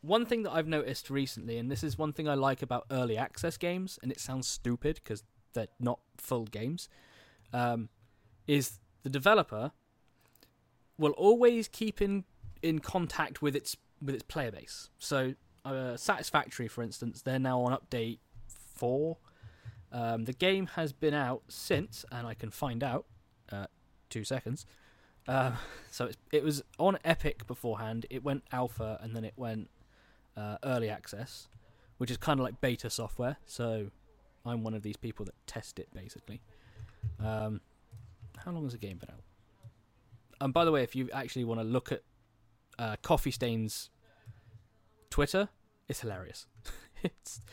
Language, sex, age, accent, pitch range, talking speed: English, male, 20-39, British, 110-135 Hz, 160 wpm